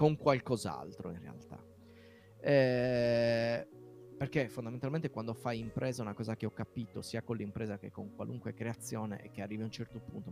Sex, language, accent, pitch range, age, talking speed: male, Italian, native, 110-145 Hz, 30-49, 165 wpm